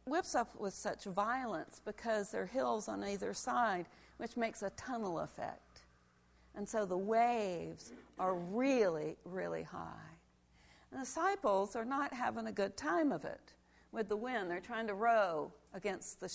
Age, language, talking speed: 50-69, English, 160 wpm